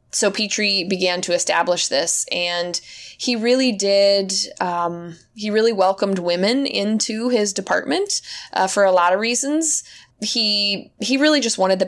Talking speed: 150 wpm